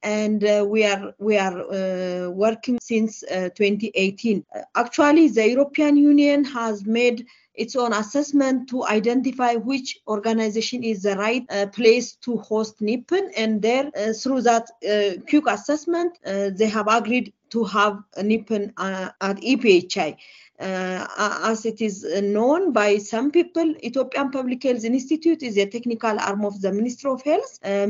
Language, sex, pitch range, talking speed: English, female, 215-275 Hz, 160 wpm